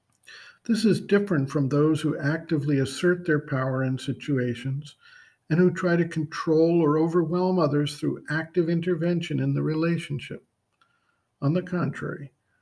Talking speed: 140 wpm